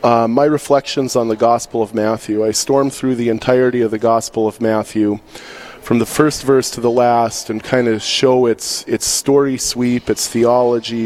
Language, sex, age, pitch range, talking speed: English, male, 30-49, 110-125 Hz, 190 wpm